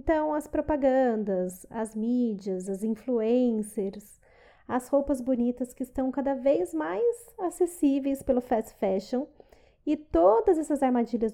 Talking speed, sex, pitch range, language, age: 120 wpm, female, 240-305 Hz, Portuguese, 30-49